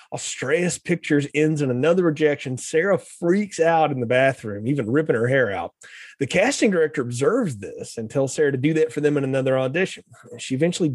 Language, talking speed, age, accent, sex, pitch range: English, 195 wpm, 30-49, American, male, 135-175 Hz